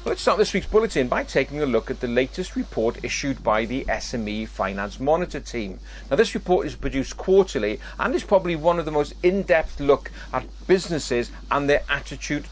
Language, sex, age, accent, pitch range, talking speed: English, male, 40-59, British, 125-175 Hz, 190 wpm